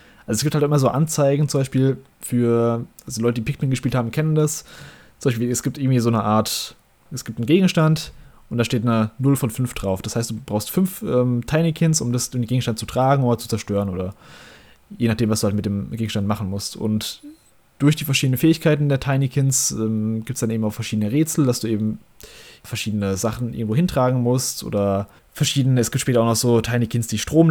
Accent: German